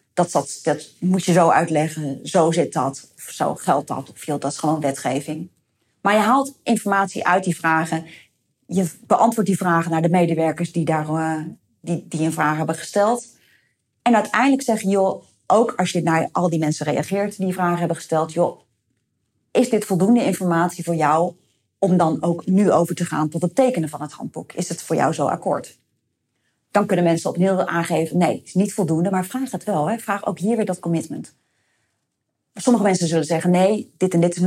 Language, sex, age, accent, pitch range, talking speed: Dutch, female, 30-49, Dutch, 160-200 Hz, 200 wpm